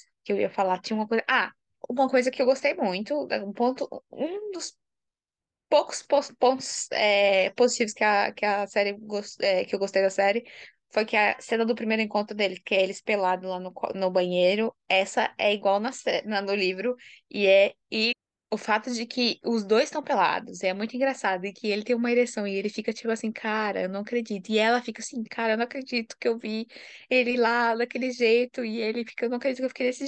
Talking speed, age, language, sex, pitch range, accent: 215 wpm, 20-39, Portuguese, female, 195-235 Hz, Brazilian